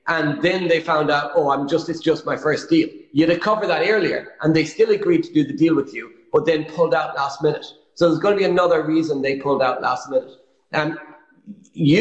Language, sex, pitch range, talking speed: English, male, 160-230 Hz, 240 wpm